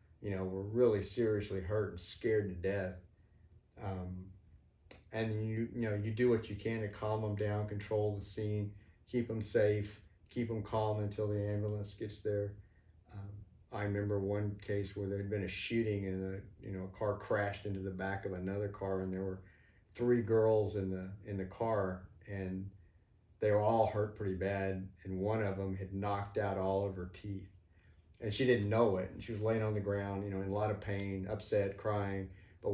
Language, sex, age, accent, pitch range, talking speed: English, male, 40-59, American, 95-105 Hz, 205 wpm